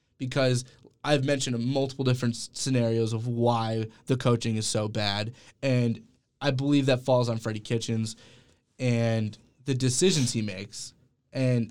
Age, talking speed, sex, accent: 20-39, 140 wpm, male, American